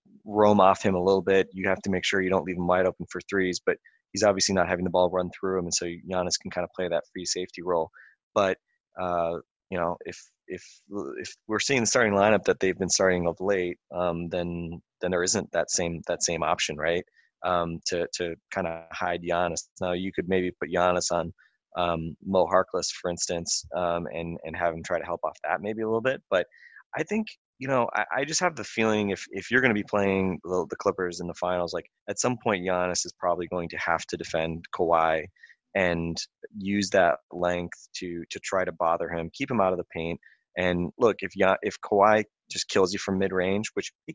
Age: 20-39